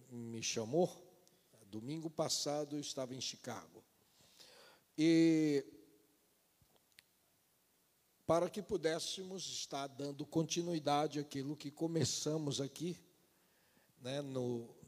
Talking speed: 80 wpm